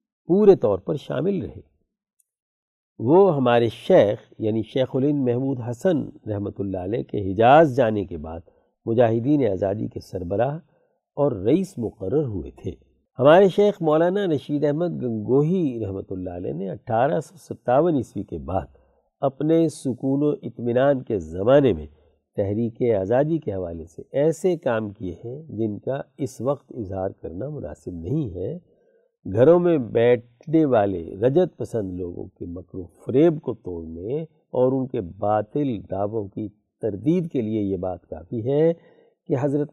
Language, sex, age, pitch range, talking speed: Urdu, male, 60-79, 100-145 Hz, 150 wpm